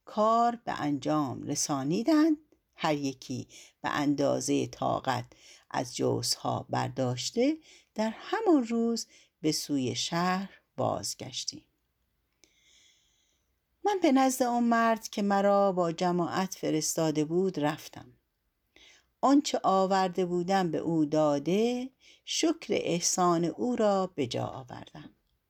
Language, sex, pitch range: Persian, female, 150-235 Hz